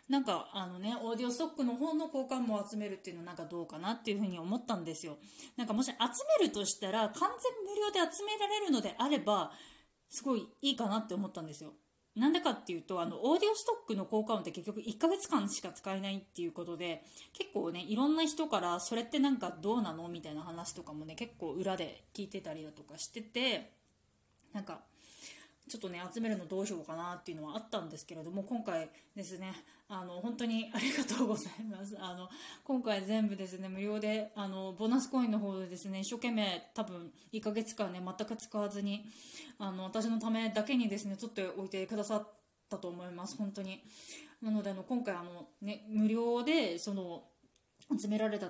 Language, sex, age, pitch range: Japanese, female, 20-39, 180-240 Hz